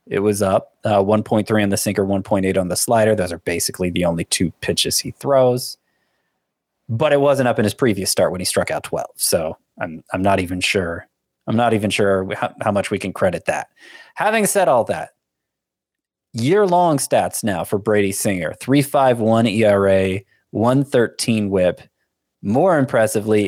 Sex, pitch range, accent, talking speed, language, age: male, 105-135 Hz, American, 170 wpm, English, 20-39